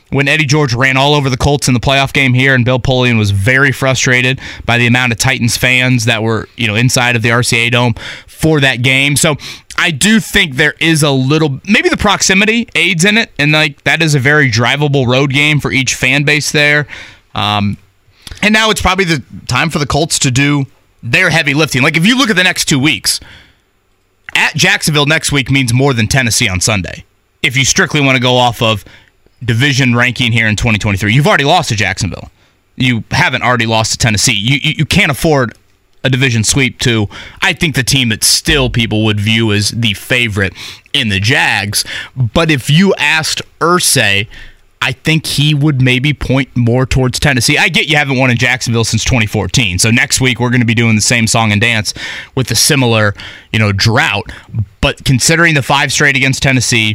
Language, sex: English, male